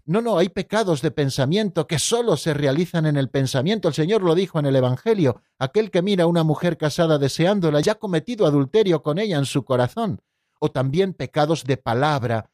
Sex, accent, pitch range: male, Spanish, 140-185 Hz